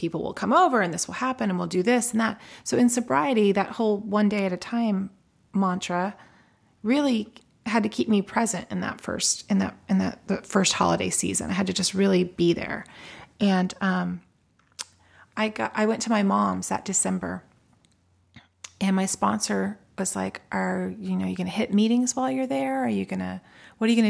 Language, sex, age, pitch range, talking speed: English, female, 30-49, 175-215 Hz, 210 wpm